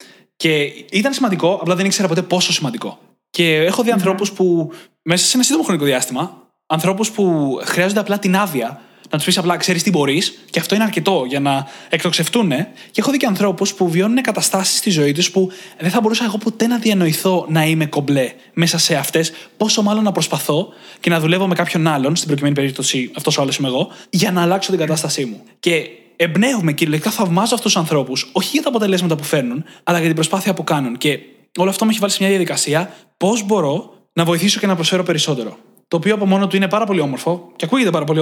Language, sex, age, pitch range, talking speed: Greek, male, 20-39, 155-200 Hz, 215 wpm